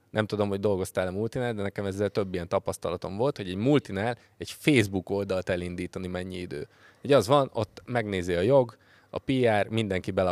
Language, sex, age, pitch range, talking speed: Hungarian, male, 20-39, 95-115 Hz, 190 wpm